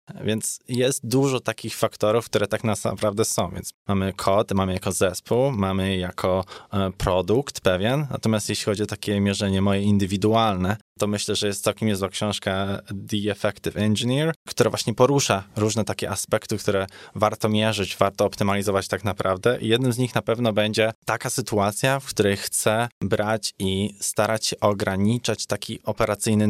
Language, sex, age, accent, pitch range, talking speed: Polish, male, 20-39, native, 100-115 Hz, 155 wpm